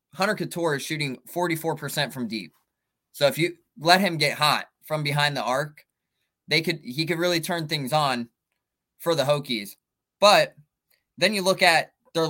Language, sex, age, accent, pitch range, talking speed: English, male, 20-39, American, 140-175 Hz, 170 wpm